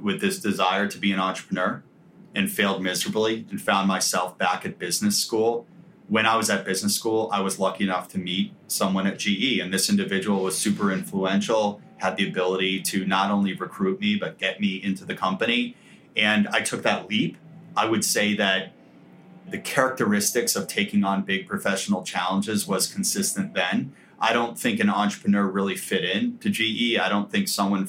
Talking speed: 185 wpm